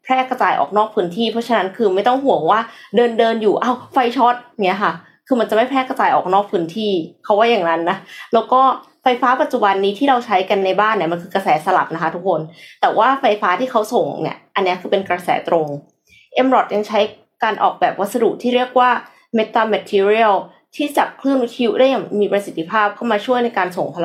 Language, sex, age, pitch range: Thai, female, 20-39, 185-240 Hz